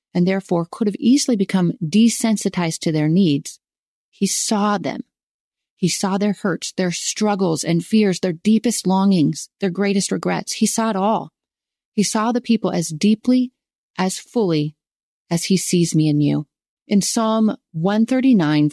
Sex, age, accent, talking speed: female, 30-49, American, 155 wpm